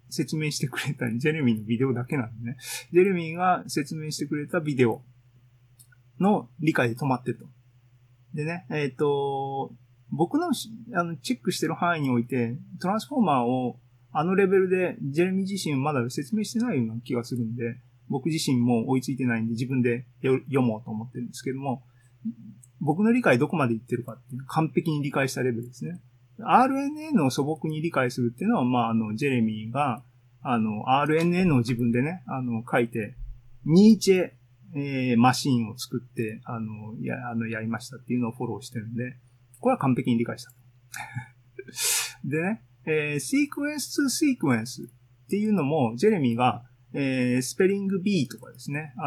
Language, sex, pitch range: Japanese, male, 120-160 Hz